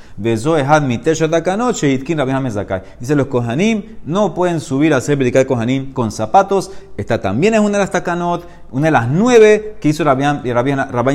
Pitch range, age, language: 120-155 Hz, 30-49, Spanish